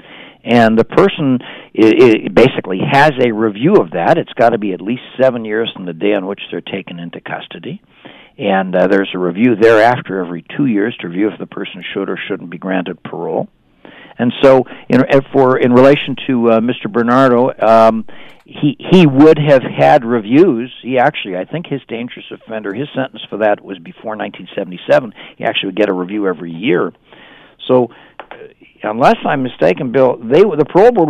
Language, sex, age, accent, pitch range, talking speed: English, male, 60-79, American, 110-155 Hz, 180 wpm